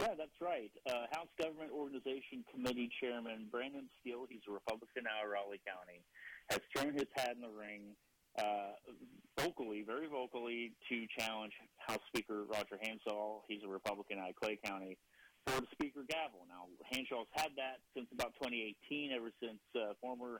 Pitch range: 105-135 Hz